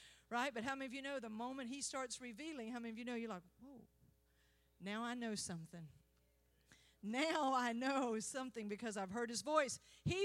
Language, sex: English, female